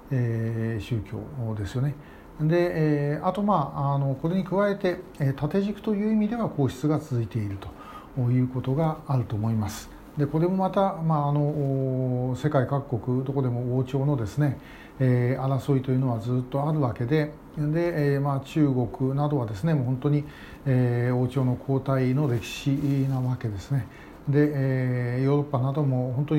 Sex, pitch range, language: male, 125-155 Hz, Japanese